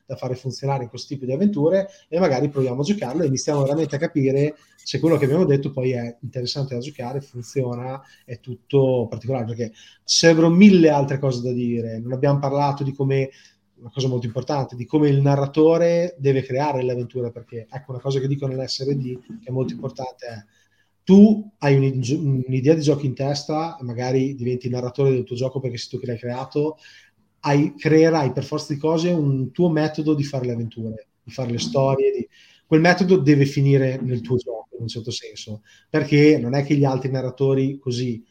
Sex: male